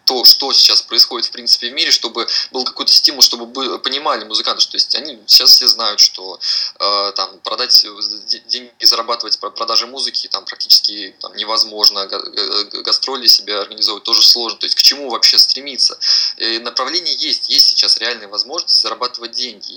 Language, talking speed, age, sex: Russian, 180 wpm, 20-39, male